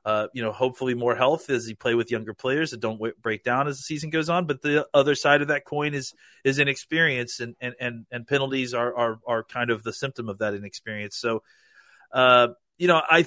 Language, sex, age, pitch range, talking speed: English, male, 30-49, 115-150 Hz, 235 wpm